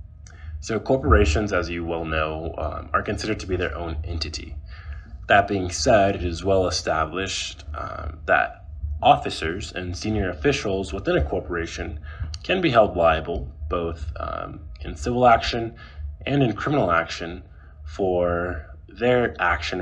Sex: male